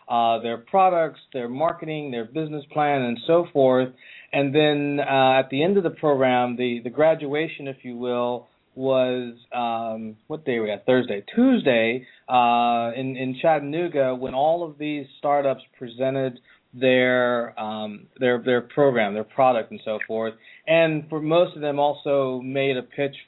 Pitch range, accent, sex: 125-150 Hz, American, male